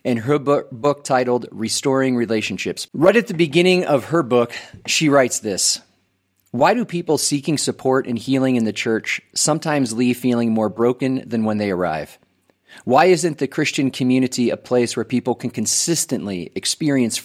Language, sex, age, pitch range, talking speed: English, male, 30-49, 120-145 Hz, 165 wpm